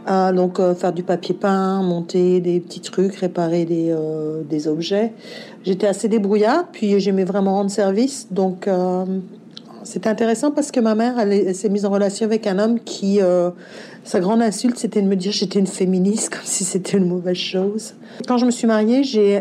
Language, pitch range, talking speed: French, 185-220 Hz, 205 wpm